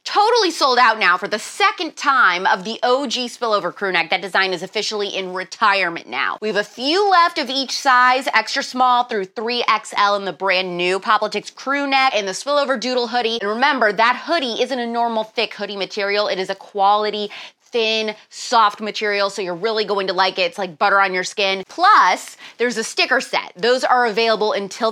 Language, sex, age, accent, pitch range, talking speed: English, female, 20-39, American, 205-275 Hz, 200 wpm